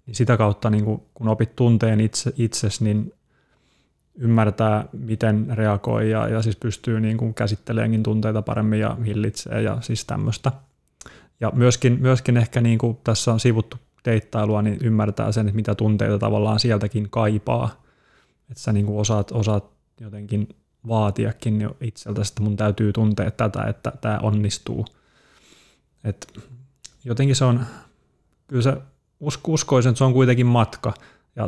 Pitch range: 105-120 Hz